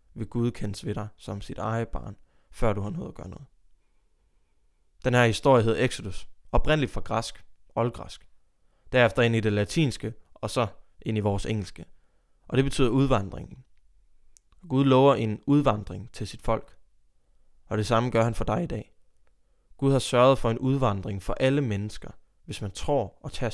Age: 20-39